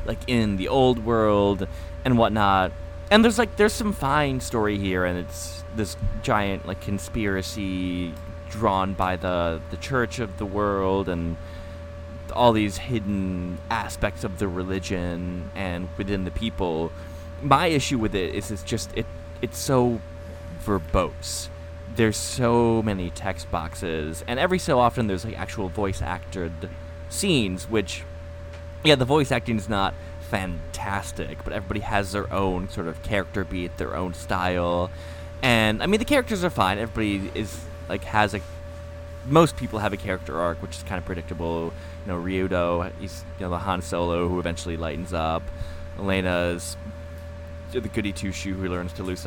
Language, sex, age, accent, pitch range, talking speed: English, male, 20-39, American, 80-105 Hz, 160 wpm